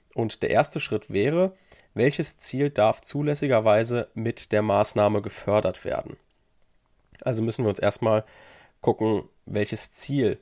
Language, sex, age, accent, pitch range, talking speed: German, male, 30-49, German, 105-130 Hz, 125 wpm